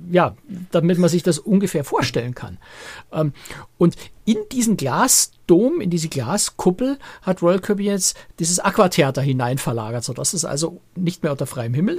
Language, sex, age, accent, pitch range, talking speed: German, male, 60-79, German, 140-180 Hz, 150 wpm